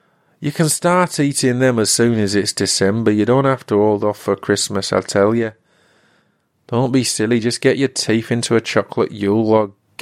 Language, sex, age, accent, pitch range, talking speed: English, male, 30-49, British, 110-150 Hz, 200 wpm